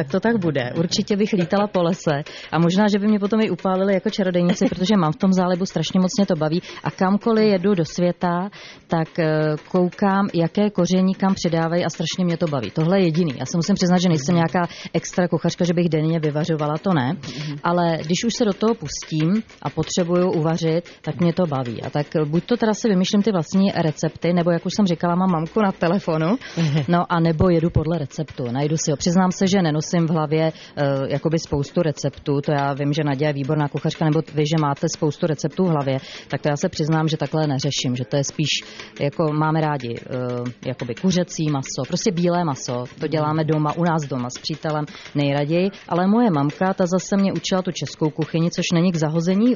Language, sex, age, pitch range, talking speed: Czech, female, 30-49, 155-185 Hz, 210 wpm